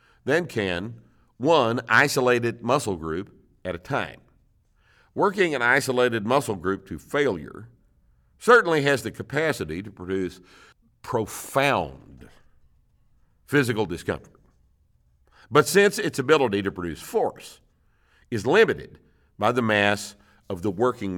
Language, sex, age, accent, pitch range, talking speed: English, male, 50-69, American, 90-115 Hz, 115 wpm